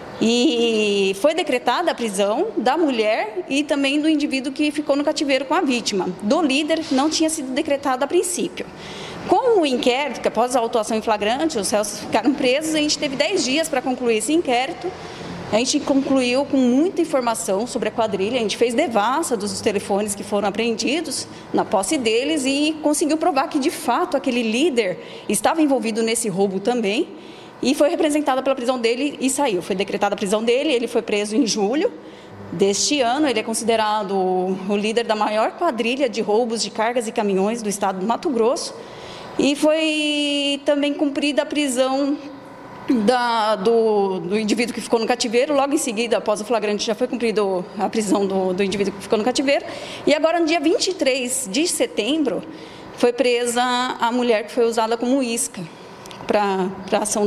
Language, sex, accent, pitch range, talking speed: Portuguese, female, Brazilian, 215-295 Hz, 180 wpm